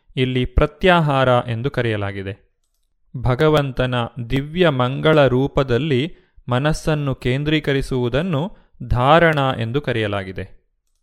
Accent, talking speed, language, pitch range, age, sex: native, 70 wpm, Kannada, 125-150 Hz, 30-49, male